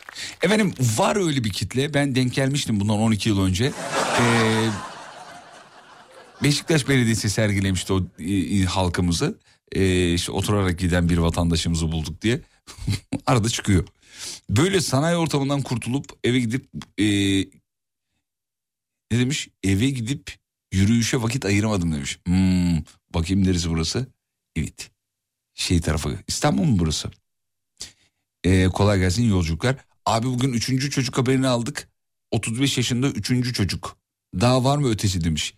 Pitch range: 90-125 Hz